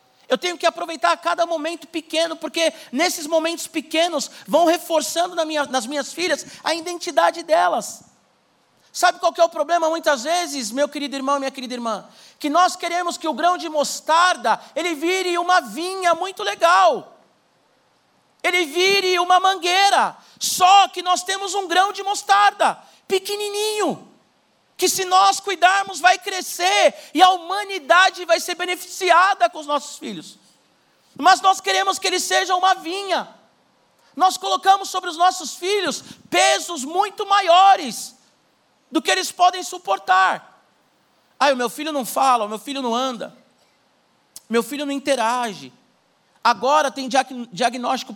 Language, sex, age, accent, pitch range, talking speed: Portuguese, male, 50-69, Brazilian, 290-370 Hz, 145 wpm